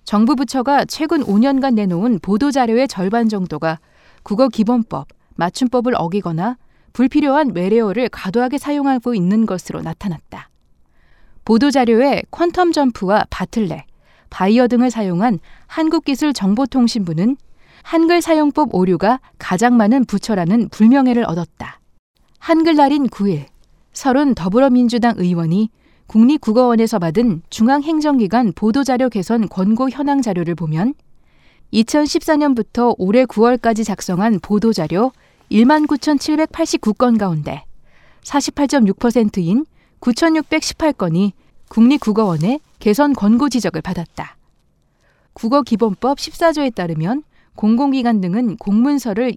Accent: native